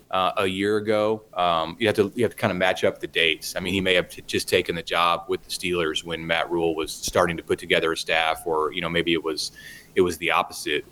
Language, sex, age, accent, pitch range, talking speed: English, male, 30-49, American, 85-110 Hz, 275 wpm